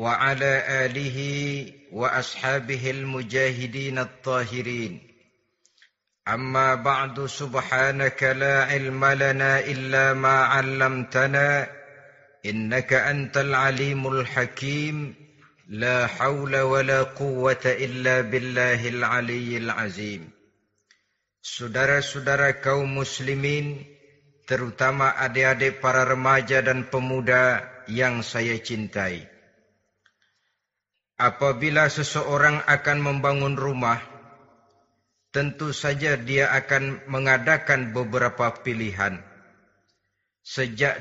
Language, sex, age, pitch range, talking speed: Indonesian, male, 50-69, 125-140 Hz, 75 wpm